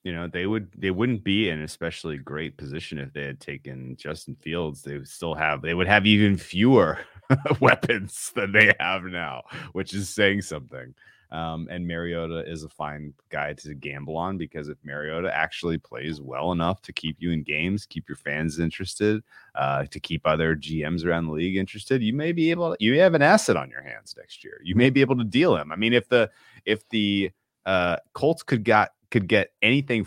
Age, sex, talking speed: 30-49, male, 210 wpm